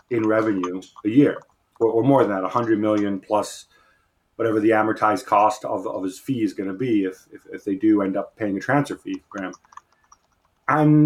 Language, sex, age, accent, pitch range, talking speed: English, male, 30-49, American, 105-125 Hz, 200 wpm